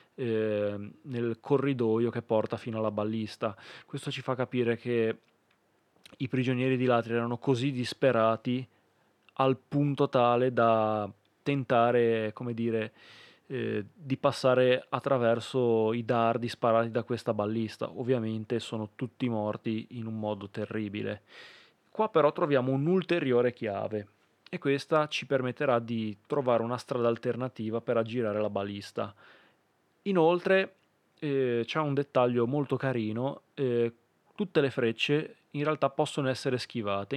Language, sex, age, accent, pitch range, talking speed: Italian, male, 20-39, native, 110-135 Hz, 125 wpm